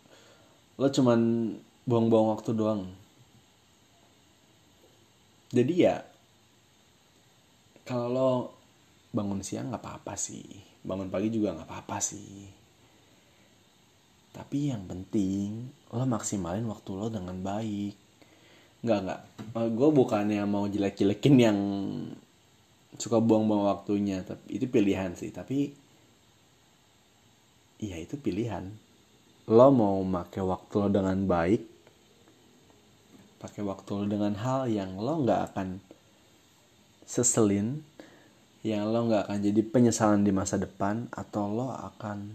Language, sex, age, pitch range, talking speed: Indonesian, male, 20-39, 100-115 Hz, 110 wpm